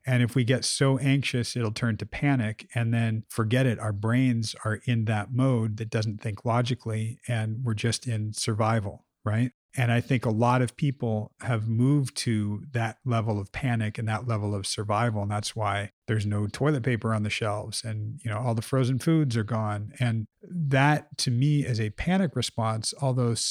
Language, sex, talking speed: English, male, 195 wpm